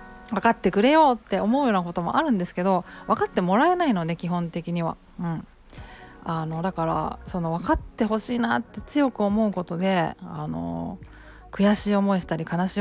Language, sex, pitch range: Japanese, female, 170-210 Hz